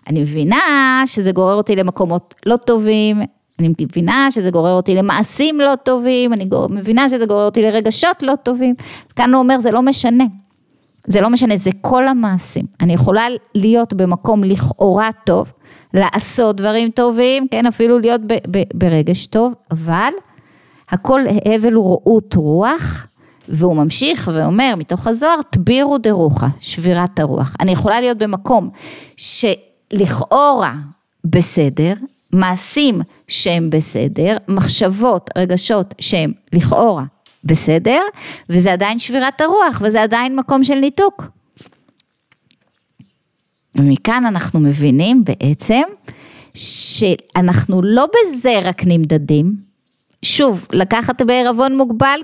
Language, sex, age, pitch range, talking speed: Hebrew, female, 30-49, 175-245 Hz, 120 wpm